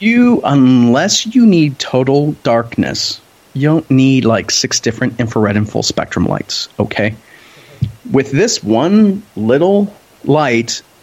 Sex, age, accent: male, 30-49, American